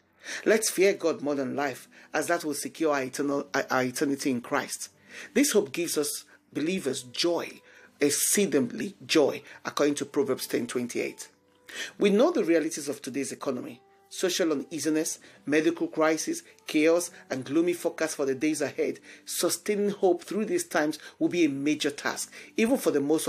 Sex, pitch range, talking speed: male, 145-195 Hz, 155 wpm